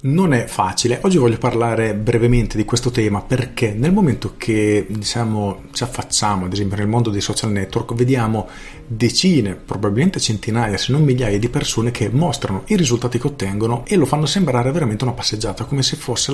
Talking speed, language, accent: 180 wpm, Italian, native